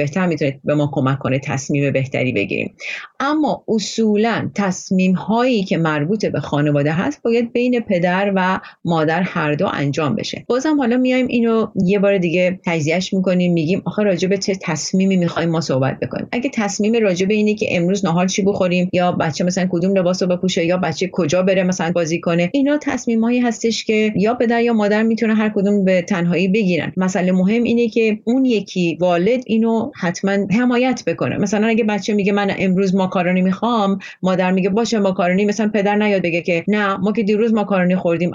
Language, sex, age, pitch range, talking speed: Persian, female, 30-49, 180-225 Hz, 185 wpm